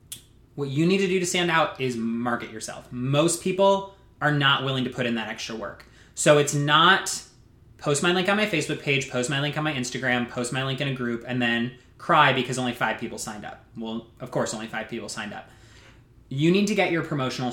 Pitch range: 120-155 Hz